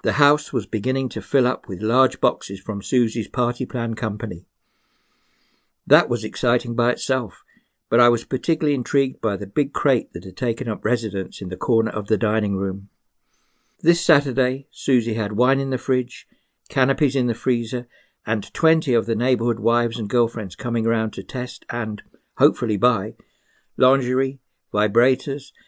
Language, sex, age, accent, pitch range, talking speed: English, male, 60-79, British, 105-130 Hz, 160 wpm